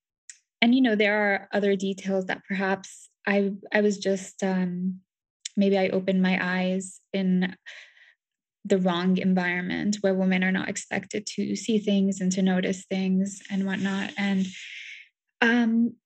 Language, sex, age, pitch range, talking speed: English, female, 10-29, 185-205 Hz, 145 wpm